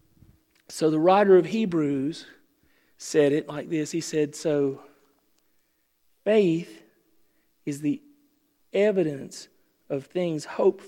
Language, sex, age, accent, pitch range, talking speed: English, male, 40-59, American, 150-200 Hz, 105 wpm